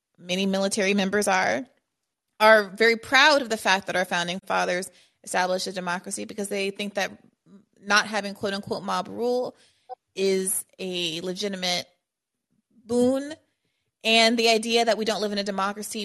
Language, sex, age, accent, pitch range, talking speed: English, female, 30-49, American, 180-210 Hz, 150 wpm